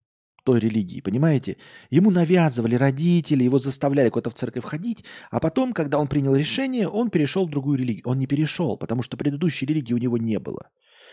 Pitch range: 105-155 Hz